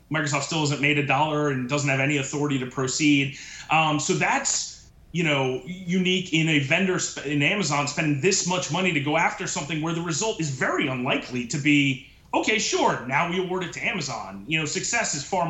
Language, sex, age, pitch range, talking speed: English, male, 30-49, 145-180 Hz, 210 wpm